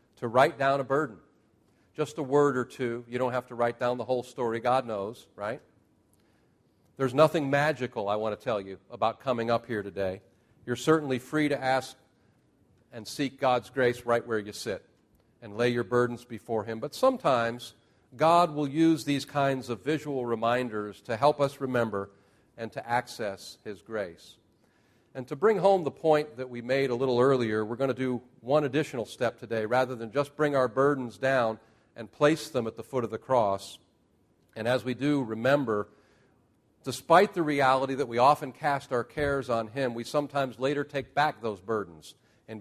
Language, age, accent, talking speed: English, 50-69, American, 185 wpm